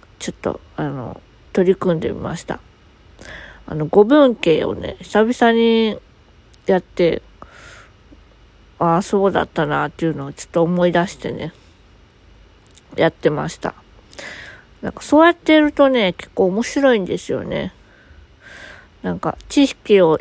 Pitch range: 170-225 Hz